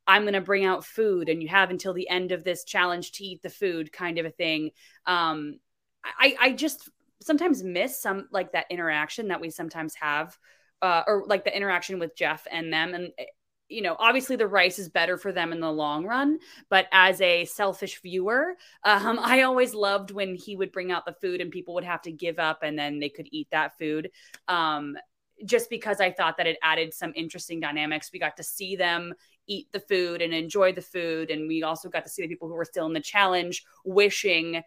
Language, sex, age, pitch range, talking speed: English, female, 20-39, 160-200 Hz, 220 wpm